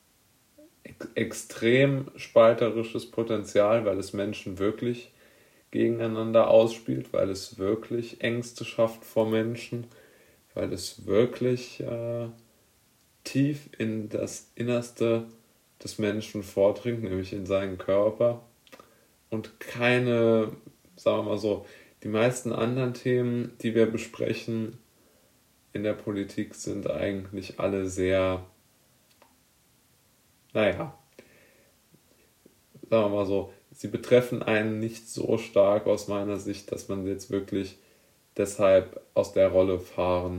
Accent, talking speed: German, 110 wpm